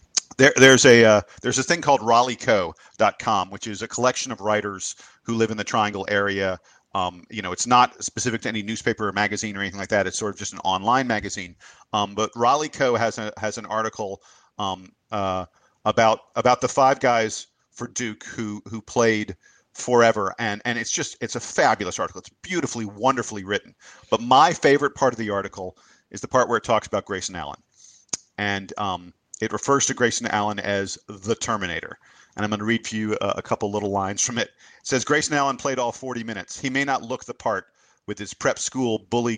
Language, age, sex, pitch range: English, 40-59, male, 105-125 Hz